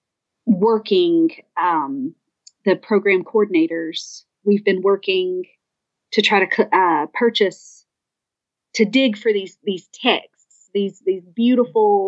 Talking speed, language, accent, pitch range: 110 wpm, English, American, 185-245 Hz